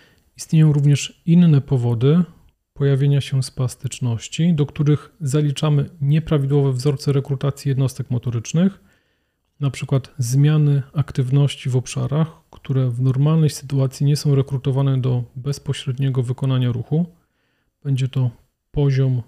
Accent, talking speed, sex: native, 105 wpm, male